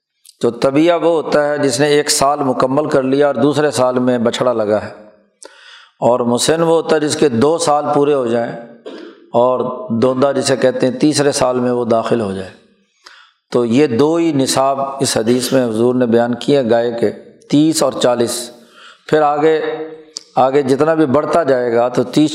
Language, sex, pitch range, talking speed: Urdu, male, 125-155 Hz, 190 wpm